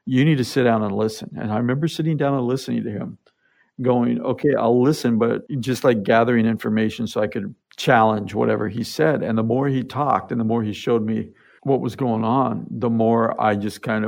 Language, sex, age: English, male, 50-69